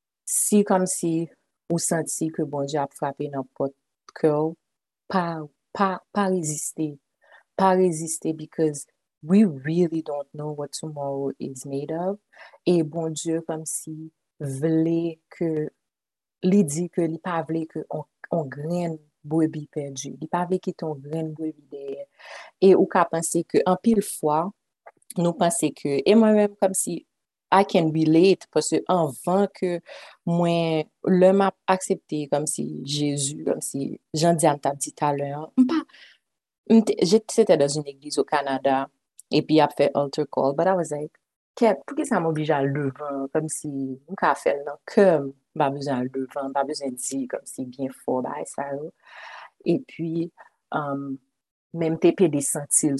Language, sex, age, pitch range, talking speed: French, female, 30-49, 140-180 Hz, 165 wpm